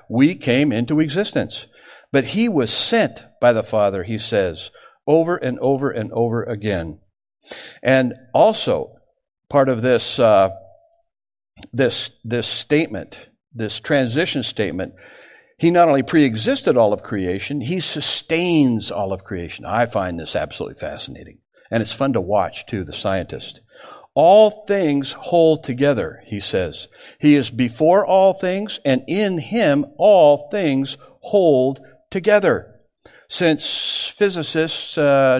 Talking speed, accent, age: 130 wpm, American, 60-79